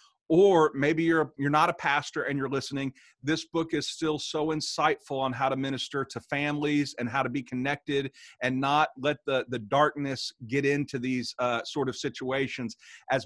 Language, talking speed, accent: English, 185 wpm, American